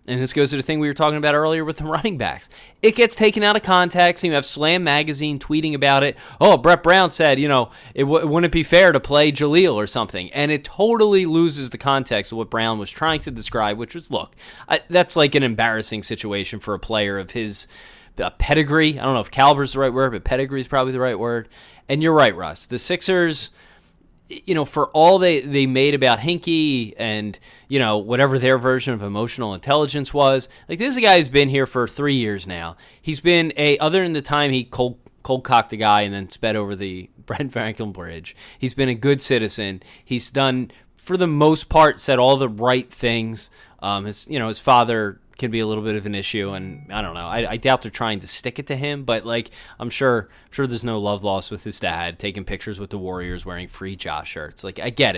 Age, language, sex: 30-49, English, male